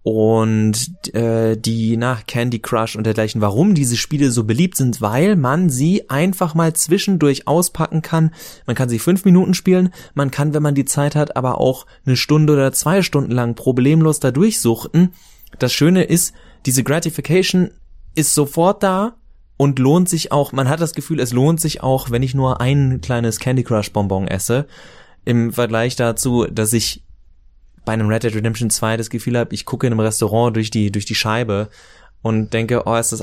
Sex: male